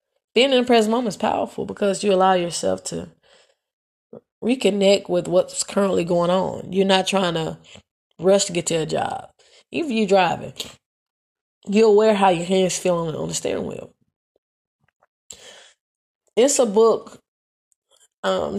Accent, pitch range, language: American, 175-205 Hz, English